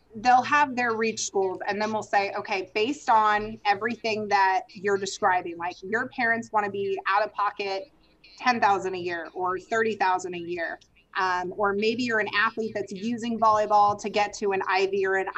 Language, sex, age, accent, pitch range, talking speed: English, female, 30-49, American, 195-235 Hz, 185 wpm